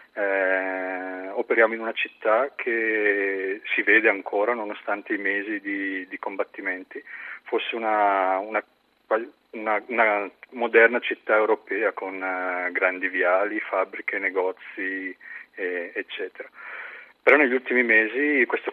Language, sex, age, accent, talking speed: Italian, male, 40-59, native, 115 wpm